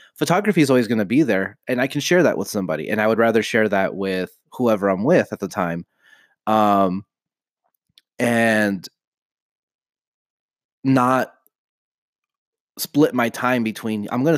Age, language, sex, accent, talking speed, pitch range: 30-49, English, male, American, 155 wpm, 100-130 Hz